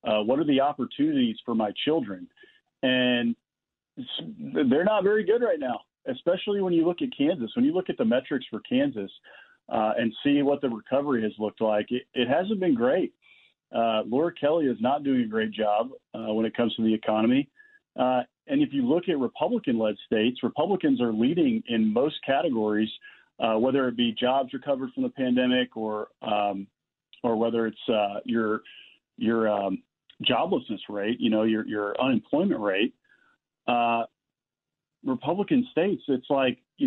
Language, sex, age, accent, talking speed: English, male, 40-59, American, 175 wpm